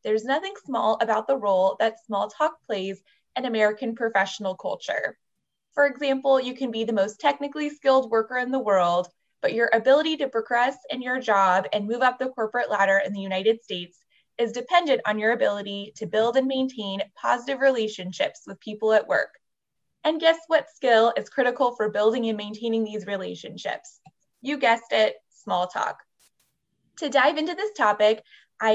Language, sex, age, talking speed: English, female, 20-39, 175 wpm